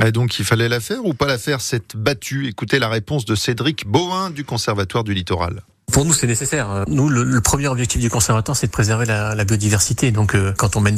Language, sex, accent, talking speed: French, male, French, 240 wpm